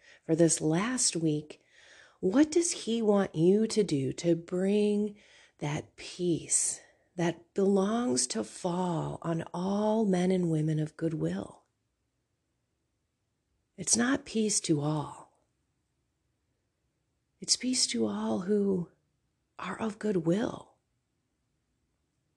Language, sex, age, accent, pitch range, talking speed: English, female, 40-59, American, 150-200 Hz, 105 wpm